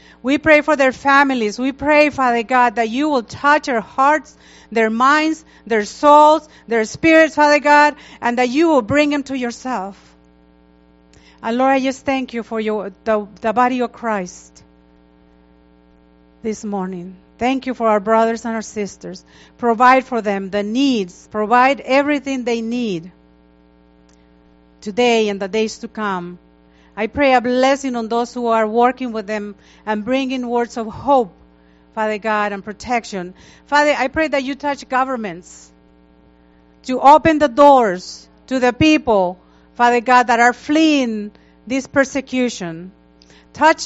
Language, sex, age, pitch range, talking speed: English, female, 40-59, 185-265 Hz, 150 wpm